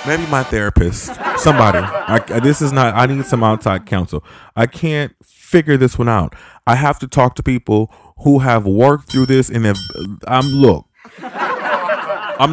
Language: English